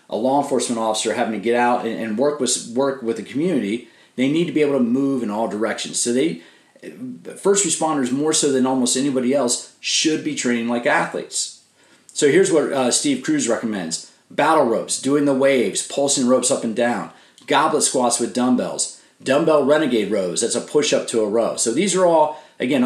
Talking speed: 200 wpm